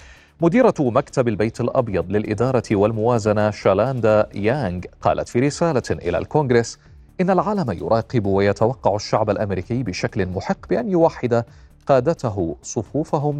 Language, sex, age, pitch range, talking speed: Arabic, male, 30-49, 105-135 Hz, 110 wpm